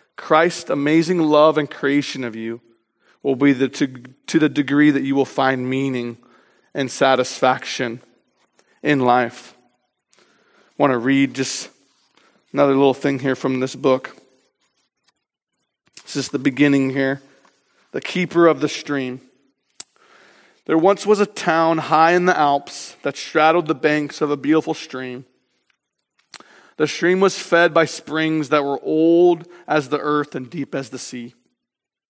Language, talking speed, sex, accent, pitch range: English, 145 wpm, male, American, 130-160 Hz